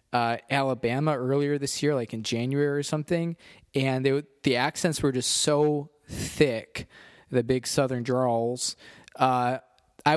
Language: English